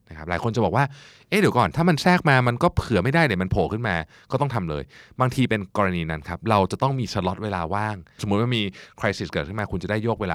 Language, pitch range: Thai, 85-115 Hz